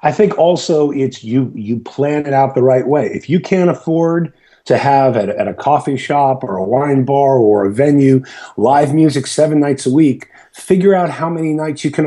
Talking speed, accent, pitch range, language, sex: 215 wpm, American, 135-180 Hz, English, male